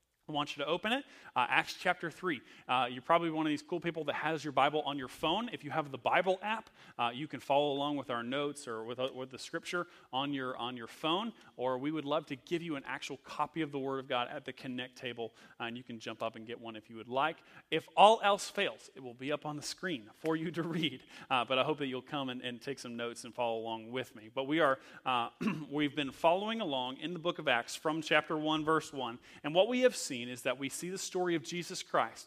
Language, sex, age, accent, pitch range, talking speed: English, male, 30-49, American, 130-180 Hz, 270 wpm